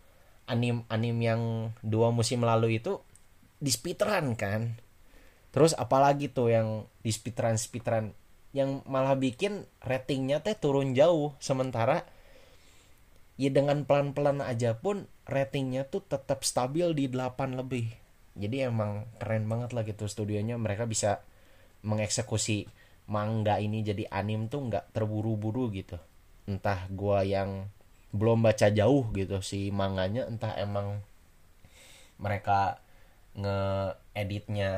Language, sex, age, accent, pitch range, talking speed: Indonesian, male, 20-39, native, 95-120 Hz, 115 wpm